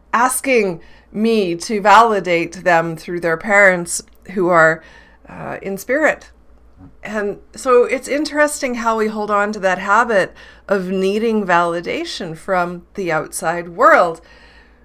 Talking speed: 125 wpm